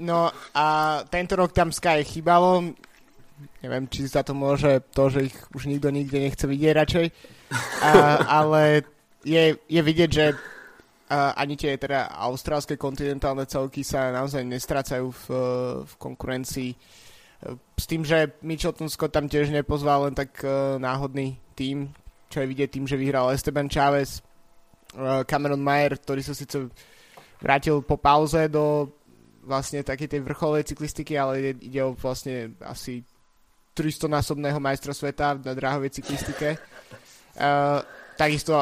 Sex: male